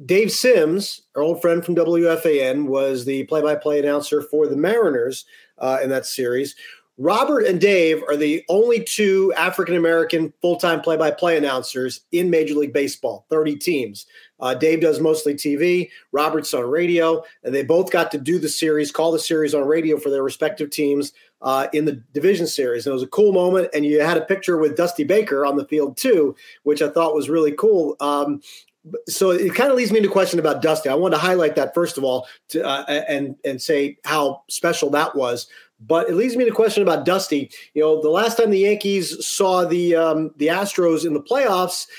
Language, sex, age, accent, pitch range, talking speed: English, male, 40-59, American, 150-200 Hz, 200 wpm